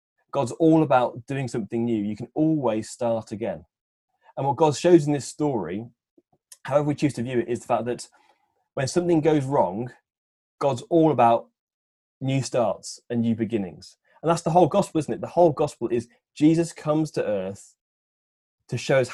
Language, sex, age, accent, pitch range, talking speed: English, male, 20-39, British, 115-150 Hz, 180 wpm